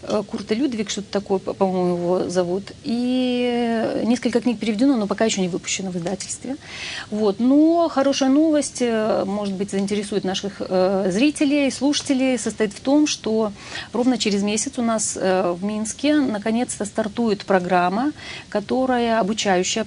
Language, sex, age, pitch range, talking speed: Russian, female, 40-59, 190-235 Hz, 130 wpm